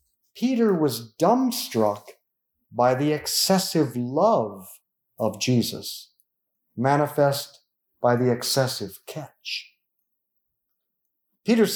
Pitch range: 115-175 Hz